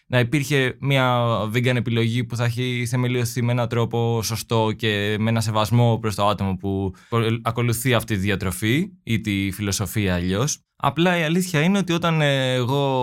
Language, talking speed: Greek, 170 wpm